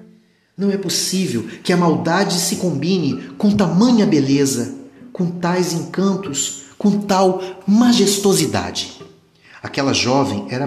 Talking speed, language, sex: 110 wpm, Portuguese, male